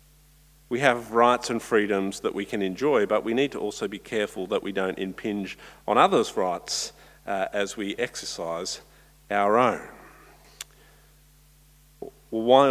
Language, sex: English, male